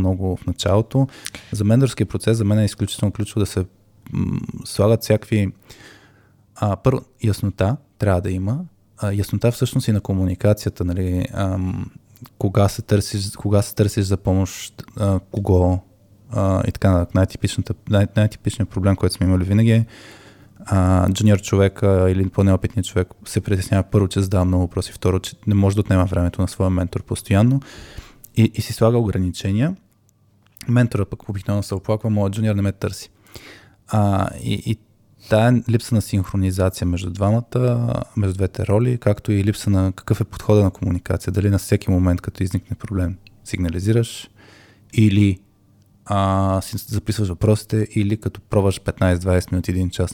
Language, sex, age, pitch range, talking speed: Bulgarian, male, 20-39, 95-110 Hz, 155 wpm